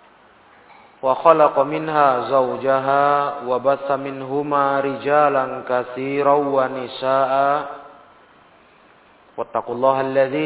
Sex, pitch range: male, 135-155 Hz